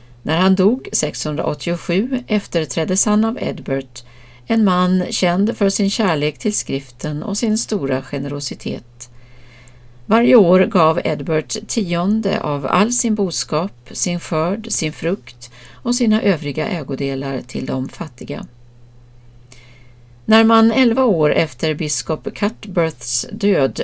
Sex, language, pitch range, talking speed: female, Swedish, 130-205 Hz, 120 wpm